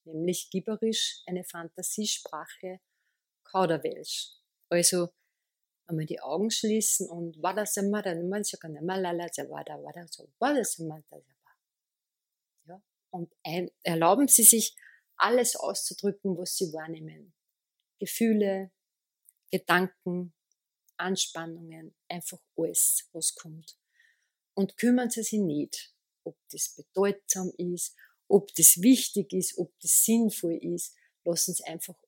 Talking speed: 100 wpm